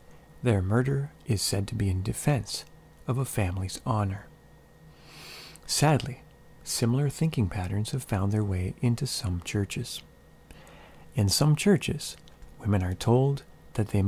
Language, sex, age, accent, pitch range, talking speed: English, male, 40-59, American, 95-135 Hz, 130 wpm